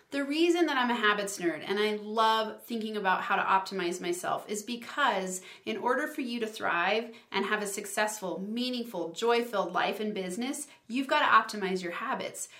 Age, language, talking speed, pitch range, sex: 30-49, English, 185 wpm, 200-240 Hz, female